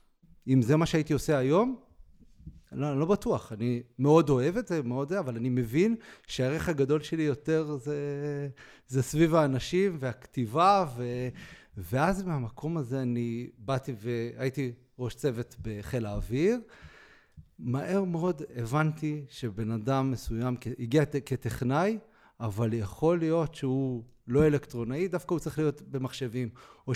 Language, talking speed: Hebrew, 130 wpm